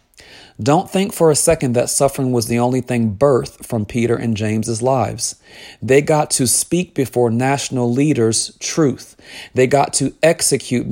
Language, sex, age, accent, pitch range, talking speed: English, male, 40-59, American, 115-140 Hz, 160 wpm